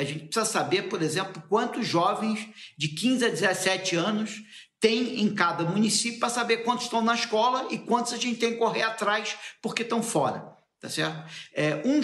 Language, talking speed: Portuguese, 190 wpm